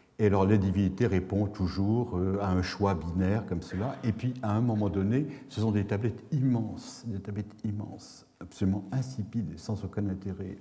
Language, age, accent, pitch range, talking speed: French, 70-89, French, 95-130 Hz, 175 wpm